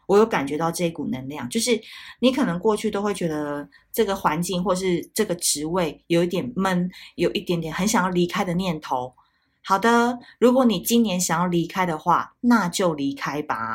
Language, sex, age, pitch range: Chinese, female, 20-39, 175-235 Hz